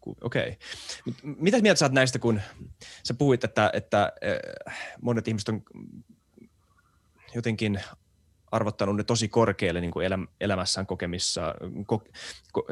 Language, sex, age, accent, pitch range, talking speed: Finnish, male, 20-39, native, 95-120 Hz, 125 wpm